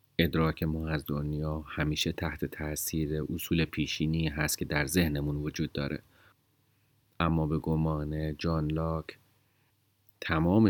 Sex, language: male, Persian